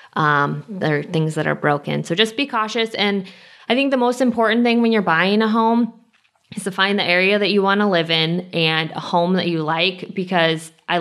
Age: 20-39